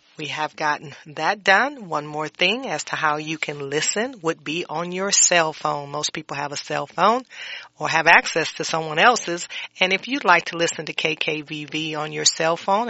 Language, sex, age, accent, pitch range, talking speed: English, female, 40-59, American, 145-170 Hz, 205 wpm